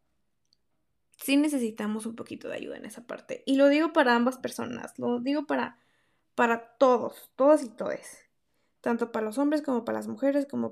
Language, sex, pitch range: Spanish, female, 230-275 Hz